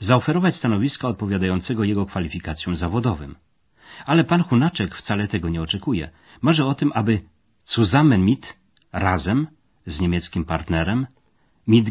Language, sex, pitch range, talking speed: Polish, male, 85-120 Hz, 120 wpm